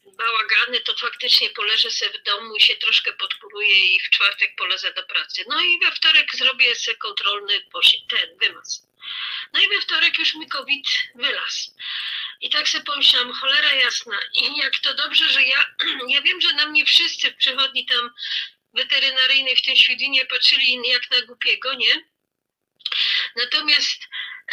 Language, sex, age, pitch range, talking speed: Polish, female, 40-59, 240-320 Hz, 160 wpm